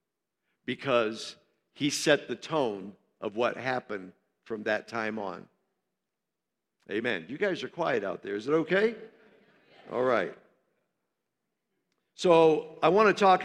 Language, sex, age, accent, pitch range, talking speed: English, male, 50-69, American, 130-160 Hz, 130 wpm